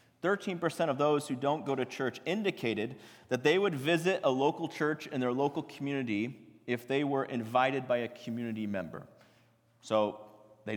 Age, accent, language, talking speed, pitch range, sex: 30-49, American, English, 160 wpm, 115-180 Hz, male